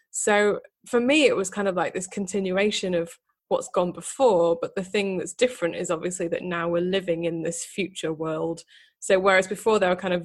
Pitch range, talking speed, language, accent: 170-205 Hz, 210 wpm, English, British